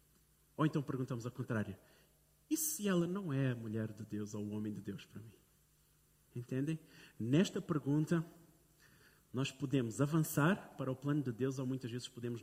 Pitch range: 130-170 Hz